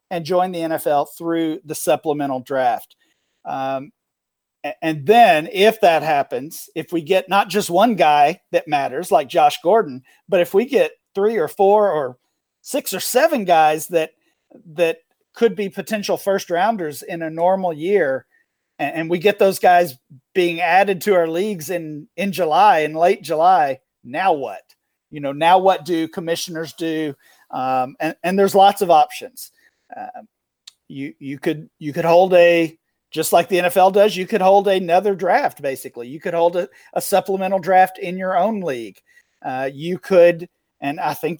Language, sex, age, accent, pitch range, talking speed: English, male, 40-59, American, 160-195 Hz, 170 wpm